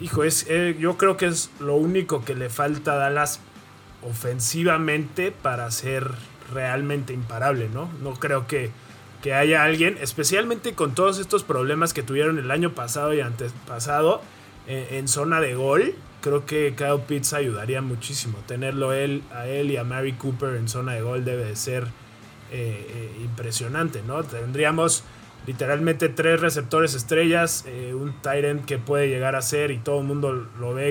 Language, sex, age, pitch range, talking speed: Spanish, male, 20-39, 120-150 Hz, 170 wpm